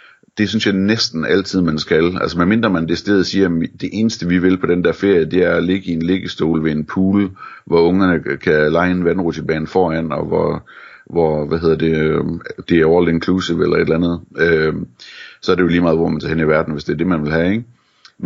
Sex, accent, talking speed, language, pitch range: male, native, 245 wpm, Danish, 80-90 Hz